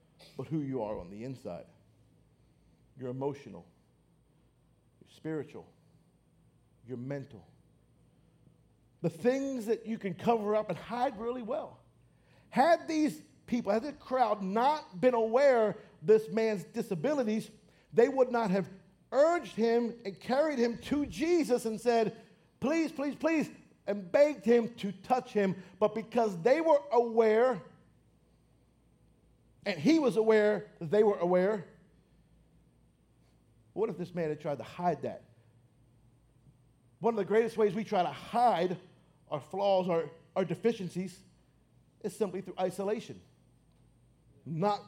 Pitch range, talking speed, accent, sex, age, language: 150-230 Hz, 130 wpm, American, male, 50-69, English